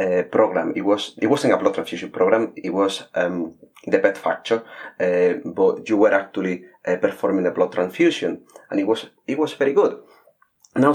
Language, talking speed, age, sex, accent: English, 180 wpm, 30-49, male, Spanish